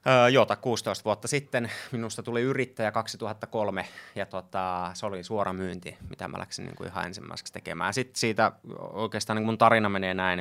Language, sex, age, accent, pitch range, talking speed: Finnish, male, 20-39, native, 95-115 Hz, 165 wpm